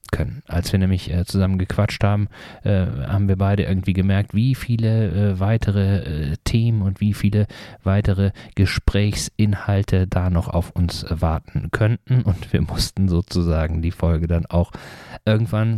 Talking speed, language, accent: 135 wpm, German, German